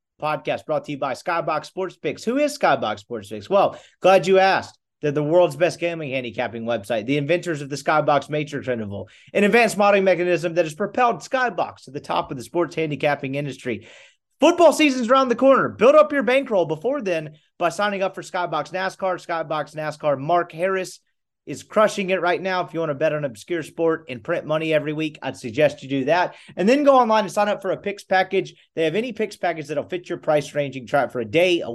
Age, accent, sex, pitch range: 30-49, American, male, 145-190 Hz